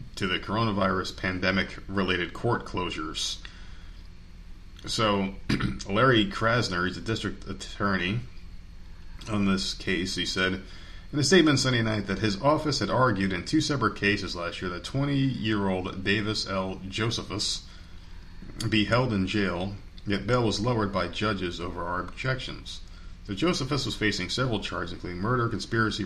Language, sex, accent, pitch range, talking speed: English, male, American, 90-110 Hz, 145 wpm